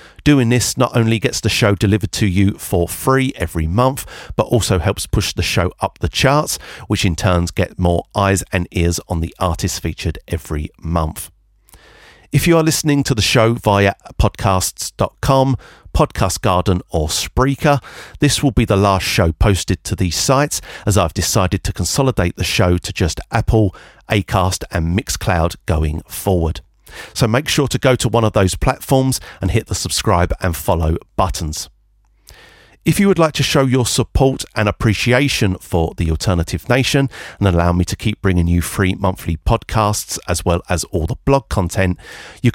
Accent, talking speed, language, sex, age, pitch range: British, 175 wpm, English, male, 50-69, 90-115 Hz